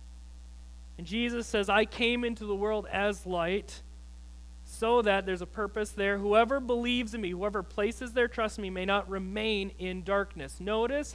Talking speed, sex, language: 170 wpm, male, English